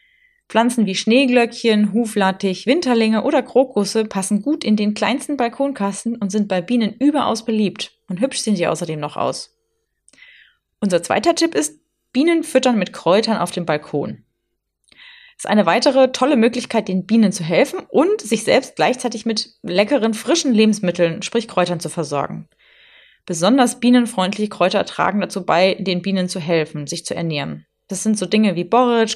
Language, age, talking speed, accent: German, 20-39, 160 wpm, German